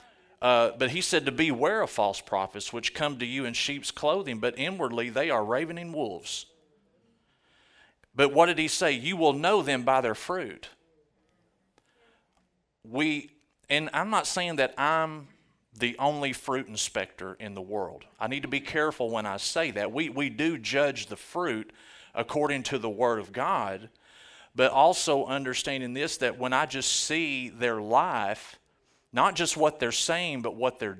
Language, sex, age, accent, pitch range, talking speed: English, male, 40-59, American, 120-145 Hz, 170 wpm